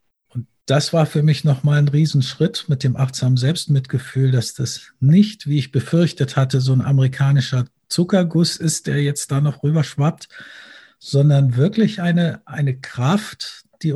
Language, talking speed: German, 145 wpm